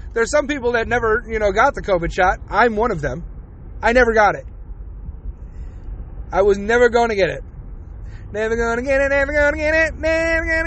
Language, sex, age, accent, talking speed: English, male, 30-49, American, 270 wpm